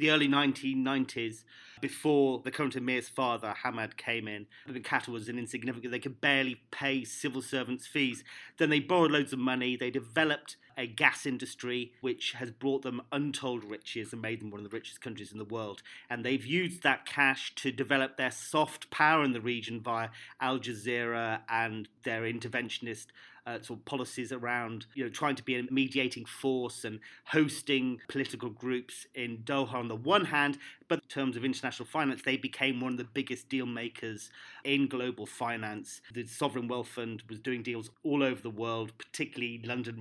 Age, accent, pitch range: 40-59, British, 120-145 Hz